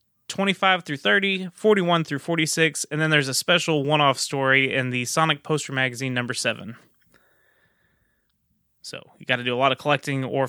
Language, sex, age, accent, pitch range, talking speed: English, male, 20-39, American, 140-195 Hz, 175 wpm